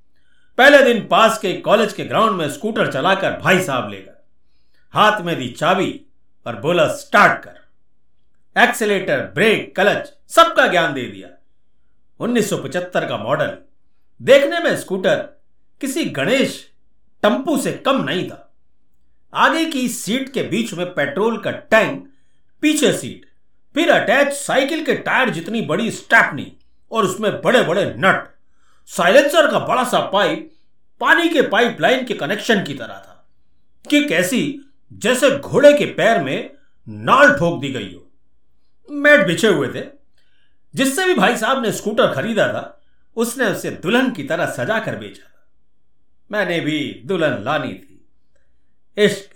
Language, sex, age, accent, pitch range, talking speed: Hindi, male, 60-79, native, 180-290 Hz, 140 wpm